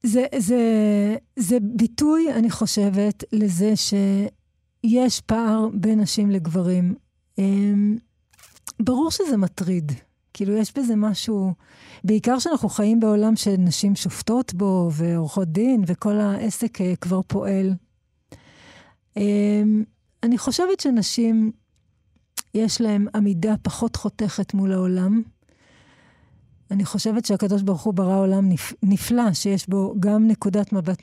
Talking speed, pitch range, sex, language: 105 wpm, 195-235 Hz, female, Hebrew